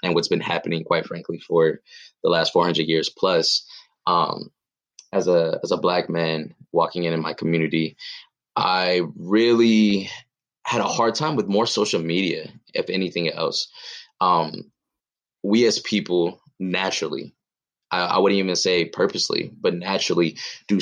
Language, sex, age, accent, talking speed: English, male, 20-39, American, 145 wpm